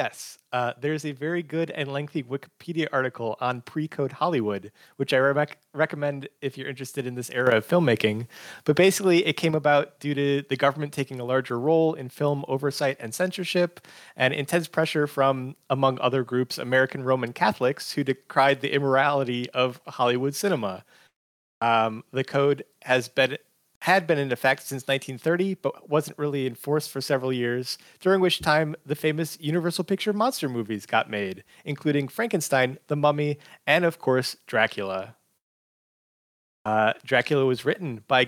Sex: male